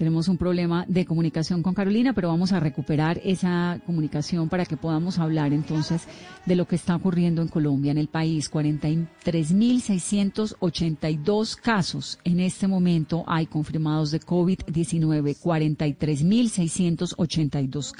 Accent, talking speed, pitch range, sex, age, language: Colombian, 125 wpm, 160-195 Hz, female, 30-49, Spanish